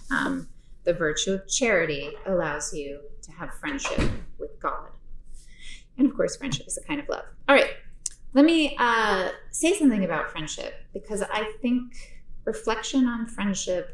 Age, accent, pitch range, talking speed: 30-49, American, 165-245 Hz, 155 wpm